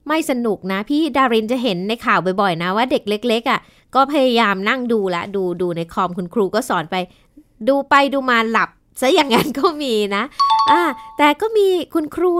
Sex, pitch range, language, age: female, 210-275 Hz, Thai, 20-39